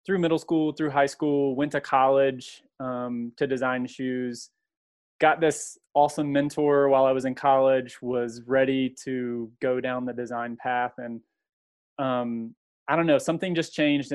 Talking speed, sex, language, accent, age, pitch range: 160 wpm, male, English, American, 20-39, 125-145 Hz